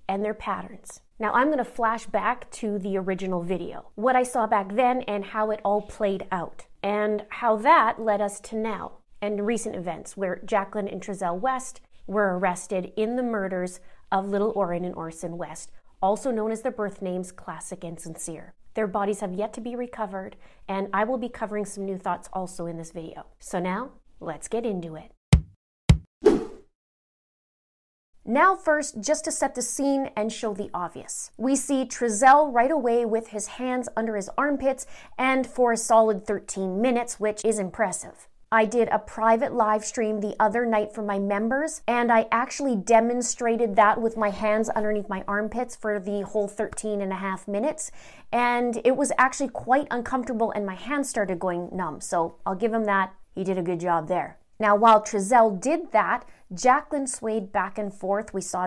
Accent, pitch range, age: American, 195-240 Hz, 30-49